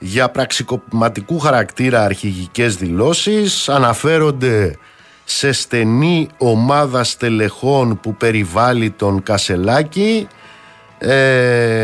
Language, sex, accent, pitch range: Greek, male, native, 100-140 Hz